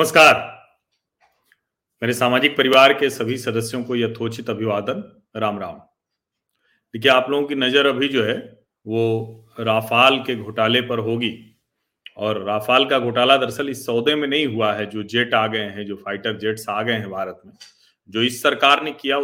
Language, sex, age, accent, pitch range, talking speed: Hindi, male, 40-59, native, 115-175 Hz, 170 wpm